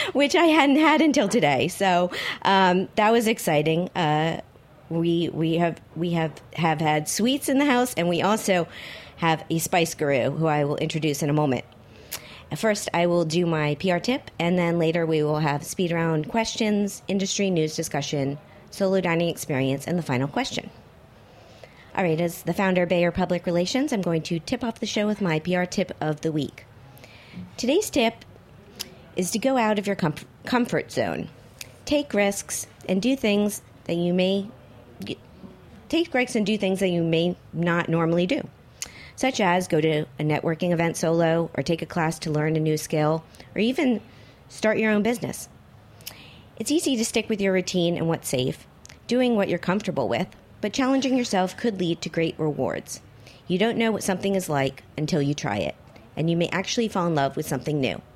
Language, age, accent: English, 40-59, American